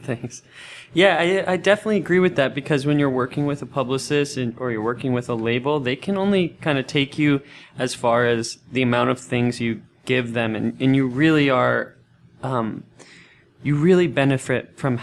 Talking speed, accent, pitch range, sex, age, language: 195 wpm, American, 115-140 Hz, male, 20-39, English